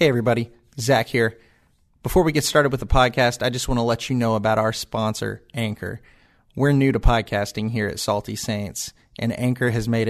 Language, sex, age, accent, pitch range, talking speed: English, male, 30-49, American, 110-135 Hz, 200 wpm